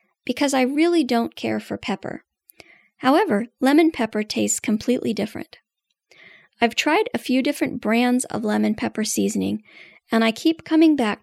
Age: 40-59